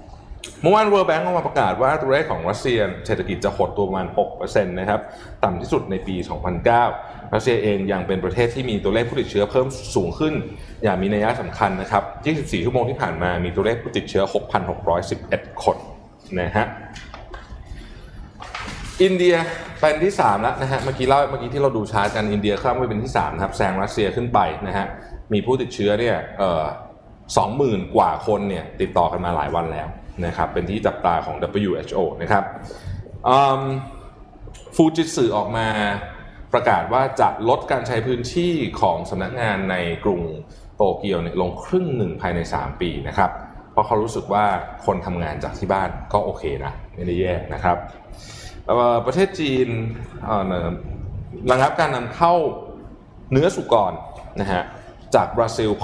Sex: male